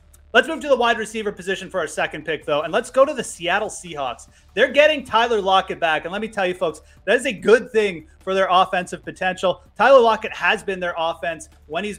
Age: 30-49